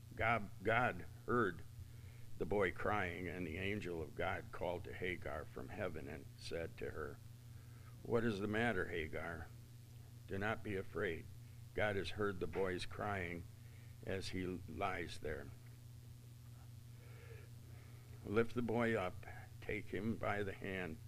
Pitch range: 95-115 Hz